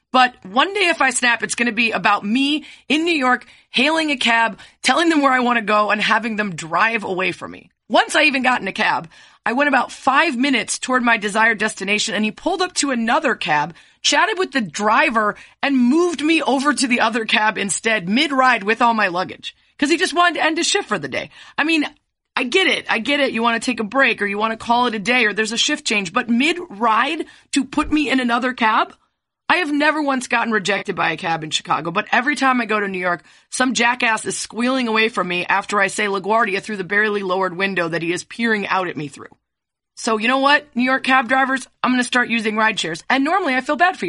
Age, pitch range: 30-49, 205-270 Hz